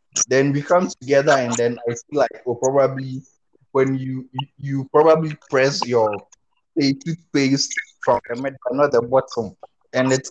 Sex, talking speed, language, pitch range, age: male, 145 wpm, English, 125-150 Hz, 20-39